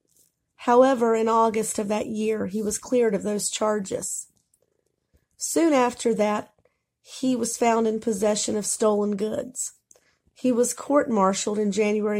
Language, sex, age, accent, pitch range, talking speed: English, female, 40-59, American, 210-240 Hz, 140 wpm